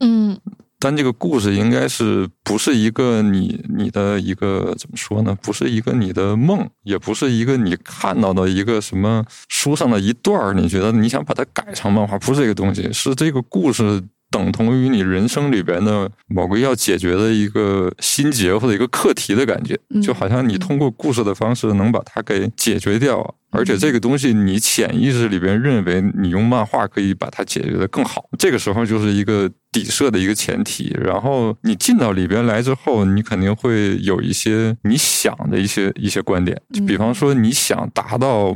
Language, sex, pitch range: Chinese, male, 100-125 Hz